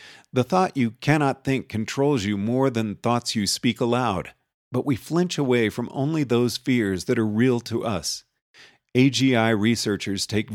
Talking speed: 165 wpm